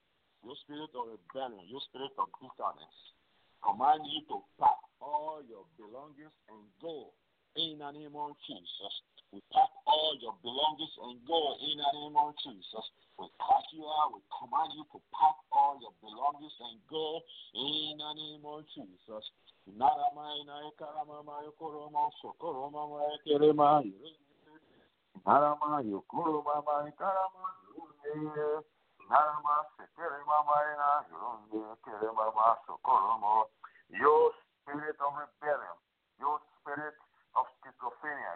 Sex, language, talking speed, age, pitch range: male, English, 90 wpm, 50-69, 145-160 Hz